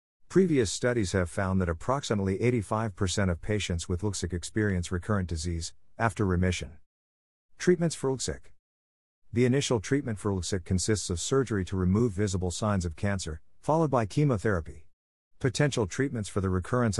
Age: 50-69